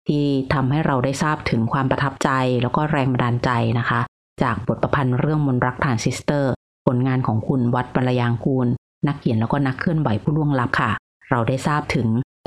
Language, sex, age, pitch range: Thai, female, 30-49, 125-160 Hz